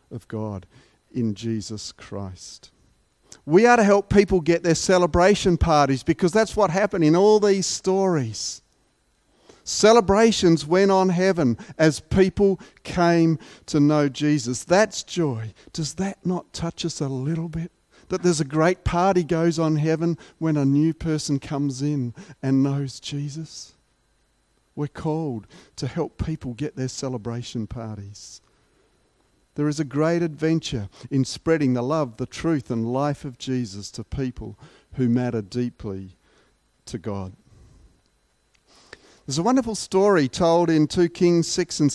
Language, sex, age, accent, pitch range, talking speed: English, male, 50-69, Australian, 125-170 Hz, 145 wpm